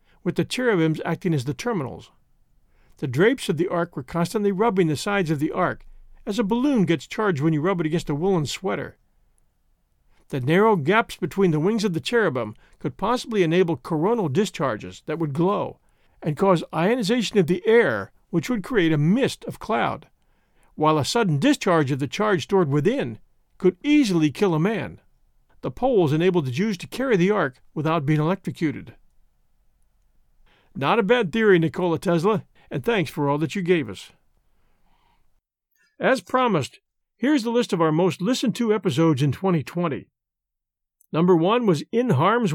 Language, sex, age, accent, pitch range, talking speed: English, male, 50-69, American, 155-205 Hz, 170 wpm